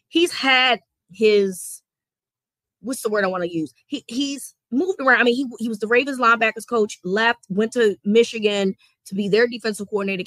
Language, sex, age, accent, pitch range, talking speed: English, female, 20-39, American, 180-225 Hz, 195 wpm